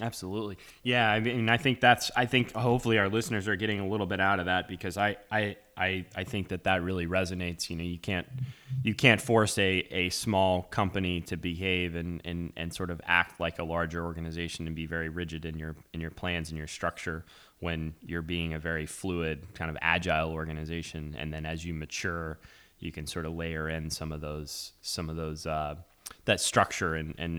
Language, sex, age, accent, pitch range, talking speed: English, male, 20-39, American, 85-115 Hz, 215 wpm